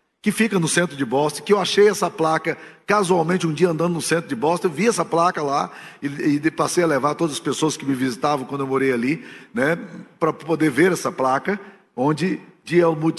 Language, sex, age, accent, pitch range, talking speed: Portuguese, male, 50-69, Brazilian, 145-190 Hz, 220 wpm